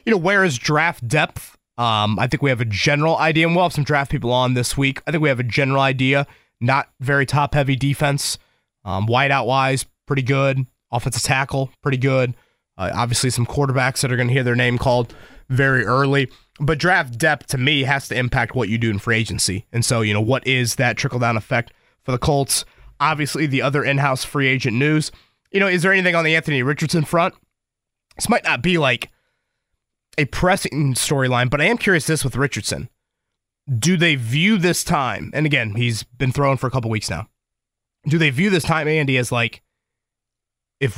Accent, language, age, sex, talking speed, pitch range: American, English, 20-39, male, 200 wpm, 120-155 Hz